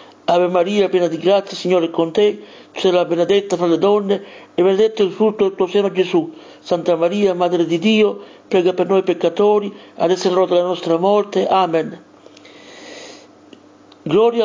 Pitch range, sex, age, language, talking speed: 175-205 Hz, male, 60-79, Italian, 170 wpm